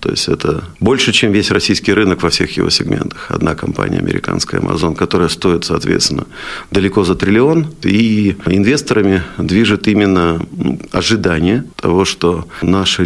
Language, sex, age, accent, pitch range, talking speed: Russian, male, 40-59, native, 85-105 Hz, 140 wpm